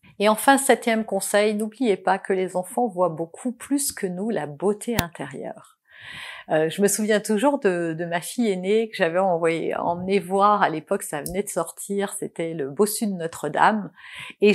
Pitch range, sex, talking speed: 195-275 Hz, female, 175 wpm